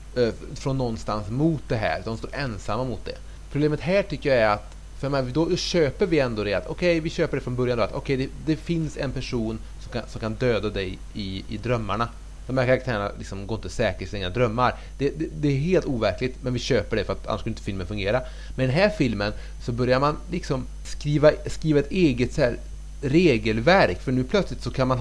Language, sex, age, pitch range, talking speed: Swedish, male, 30-49, 110-145 Hz, 235 wpm